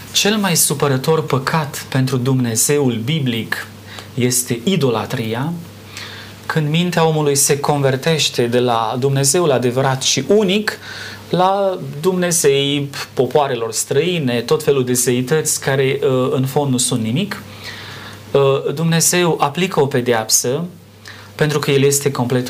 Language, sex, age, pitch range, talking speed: Romanian, male, 30-49, 120-155 Hz, 115 wpm